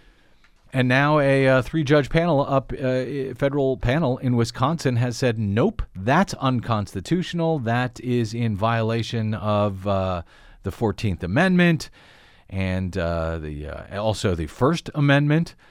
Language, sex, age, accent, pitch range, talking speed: English, male, 40-59, American, 115-145 Hz, 135 wpm